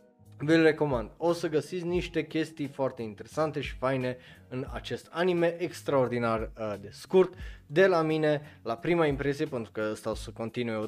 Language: Romanian